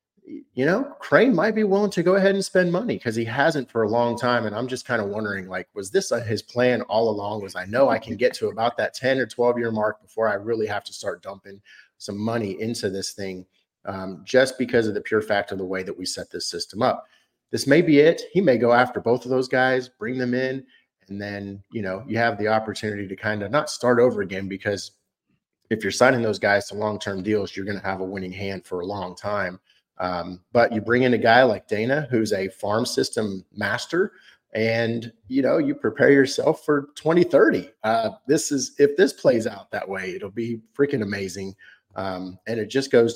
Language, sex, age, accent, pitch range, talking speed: English, male, 30-49, American, 100-130 Hz, 230 wpm